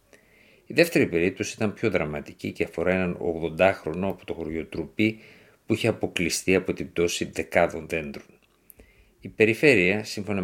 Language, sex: Greek, male